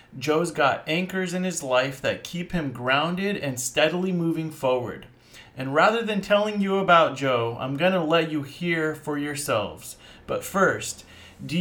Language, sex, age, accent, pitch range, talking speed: English, male, 30-49, American, 135-180 Hz, 165 wpm